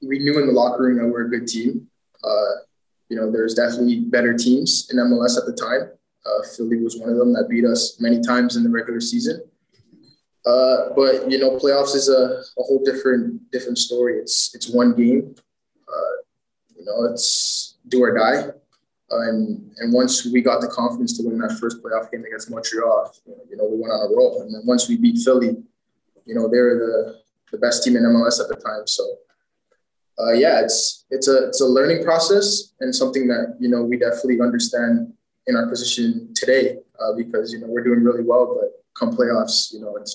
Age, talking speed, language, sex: 20-39, 210 wpm, English, male